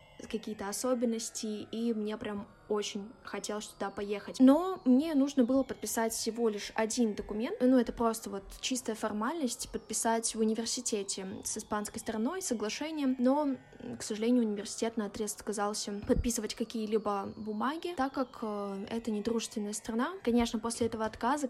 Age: 20-39